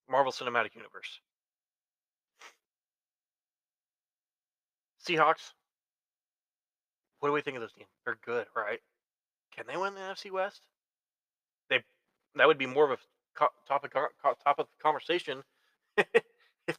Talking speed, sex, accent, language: 120 wpm, male, American, English